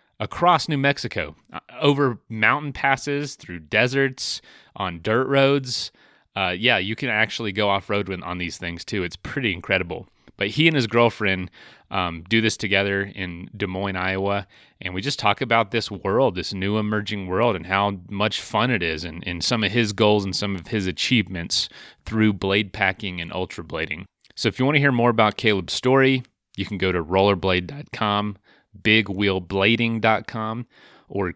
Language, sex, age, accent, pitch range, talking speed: English, male, 30-49, American, 90-115 Hz, 170 wpm